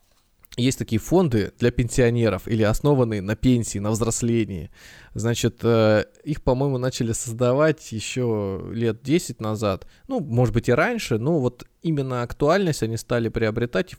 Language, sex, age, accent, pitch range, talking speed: Russian, male, 20-39, native, 110-145 Hz, 135 wpm